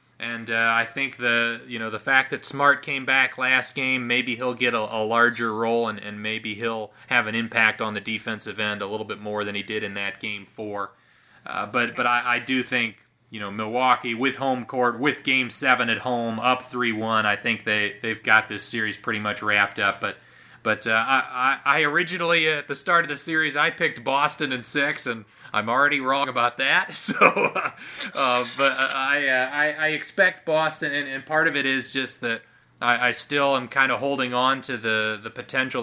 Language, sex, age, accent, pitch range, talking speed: English, male, 30-49, American, 110-135 Hz, 215 wpm